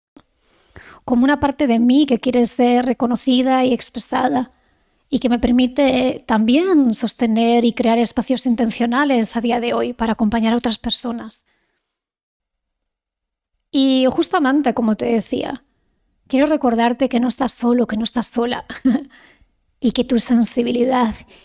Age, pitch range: 20-39, 235-265 Hz